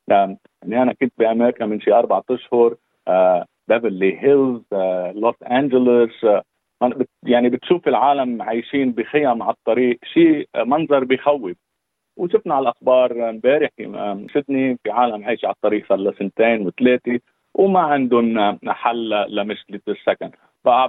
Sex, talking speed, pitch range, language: male, 130 wpm, 110-135 Hz, Arabic